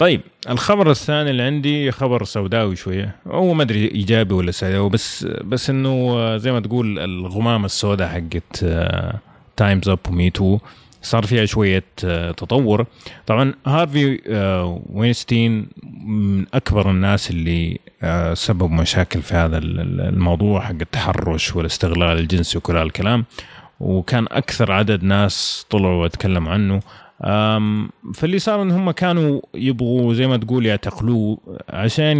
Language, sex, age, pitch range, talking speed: Arabic, male, 30-49, 90-120 Hz, 125 wpm